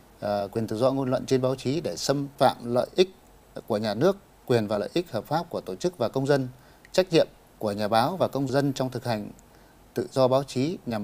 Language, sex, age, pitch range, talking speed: Vietnamese, male, 30-49, 115-140 Hz, 245 wpm